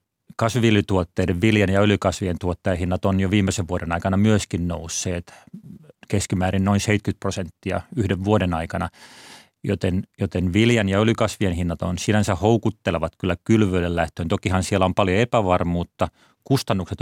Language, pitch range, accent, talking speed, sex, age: Finnish, 90-105 Hz, native, 130 wpm, male, 30-49